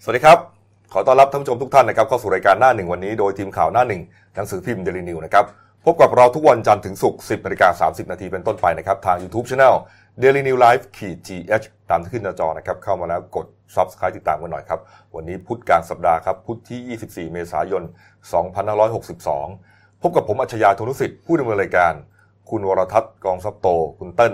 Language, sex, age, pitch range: Thai, male, 30-49, 95-120 Hz